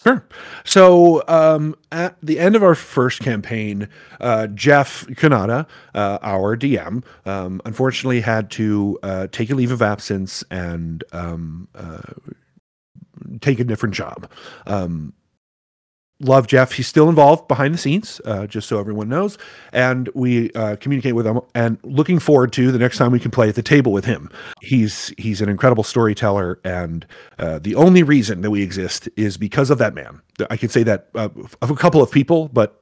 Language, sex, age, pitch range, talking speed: English, male, 40-59, 105-145 Hz, 175 wpm